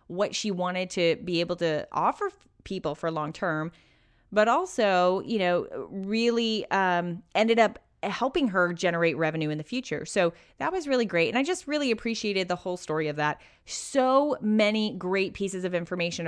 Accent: American